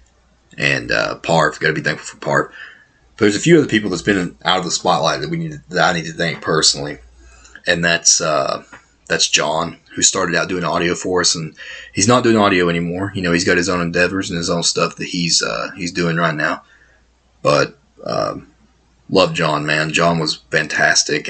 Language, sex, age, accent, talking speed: English, male, 30-49, American, 210 wpm